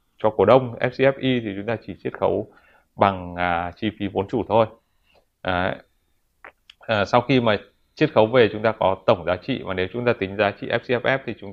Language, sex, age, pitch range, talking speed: Vietnamese, male, 20-39, 100-130 Hz, 215 wpm